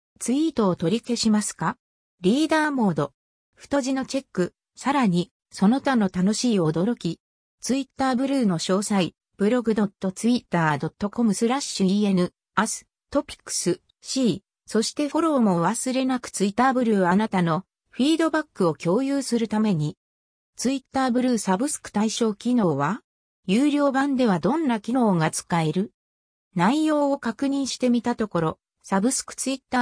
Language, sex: Japanese, female